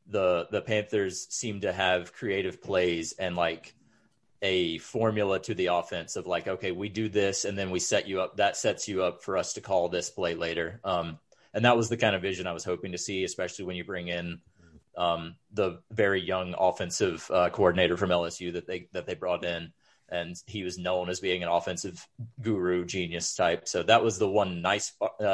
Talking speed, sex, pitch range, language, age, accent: 210 wpm, male, 90-115 Hz, English, 30-49, American